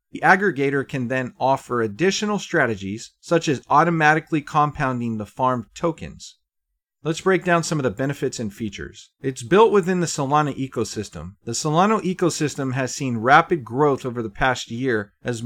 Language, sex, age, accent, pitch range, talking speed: English, male, 40-59, American, 115-150 Hz, 160 wpm